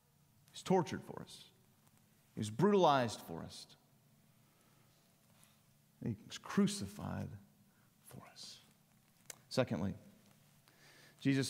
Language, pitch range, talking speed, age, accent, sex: English, 130-180 Hz, 85 wpm, 40-59, American, male